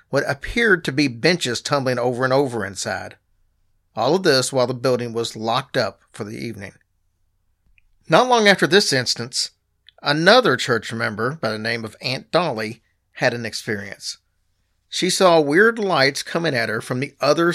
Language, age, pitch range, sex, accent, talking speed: English, 40-59, 105-155 Hz, male, American, 170 wpm